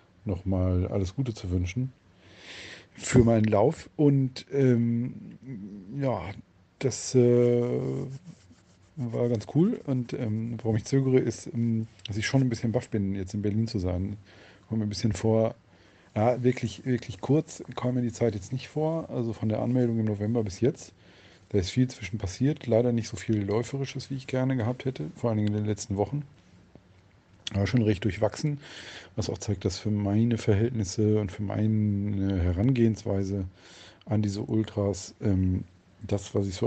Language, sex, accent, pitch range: German, male, German, 95-120 Hz